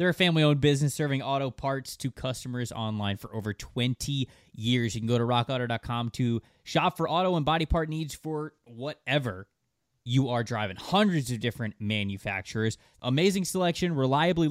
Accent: American